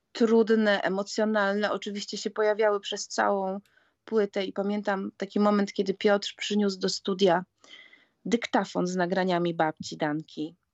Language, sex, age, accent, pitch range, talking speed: Polish, female, 30-49, native, 180-210 Hz, 125 wpm